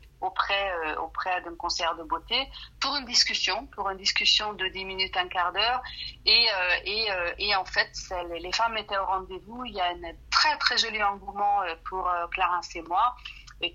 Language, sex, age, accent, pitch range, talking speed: French, female, 40-59, French, 180-210 Hz, 180 wpm